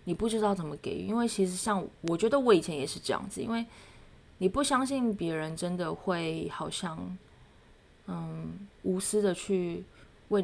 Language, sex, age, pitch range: Chinese, female, 20-39, 160-200 Hz